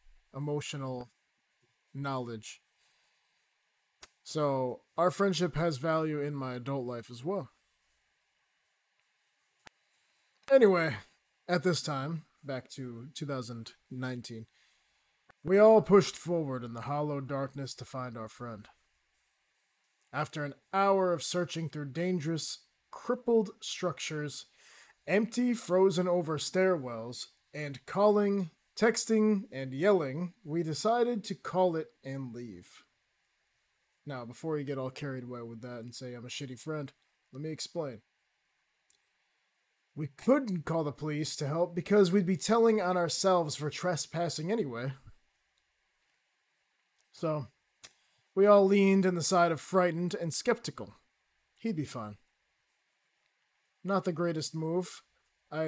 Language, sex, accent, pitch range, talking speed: English, male, American, 135-185 Hz, 115 wpm